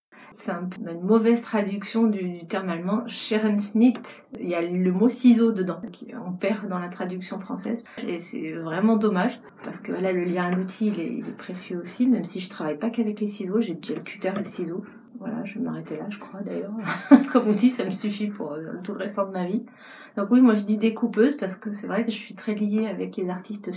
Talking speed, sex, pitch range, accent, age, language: 235 wpm, female, 180-215 Hz, French, 30-49, French